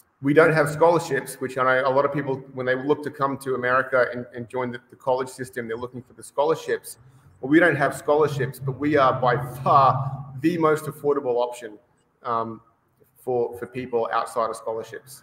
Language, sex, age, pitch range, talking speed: English, male, 30-49, 120-150 Hz, 200 wpm